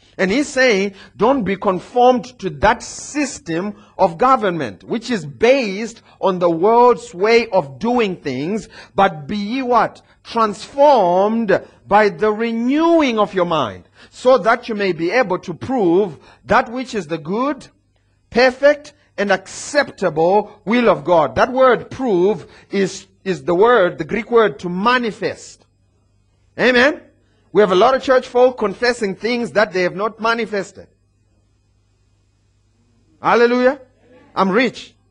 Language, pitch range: English, 165-240 Hz